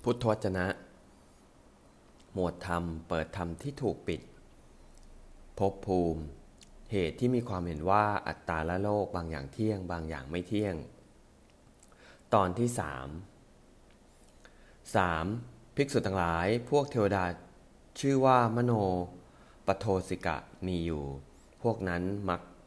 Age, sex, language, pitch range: 30-49, male, English, 80-100 Hz